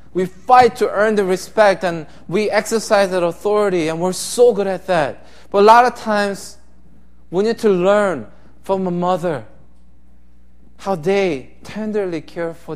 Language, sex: Korean, male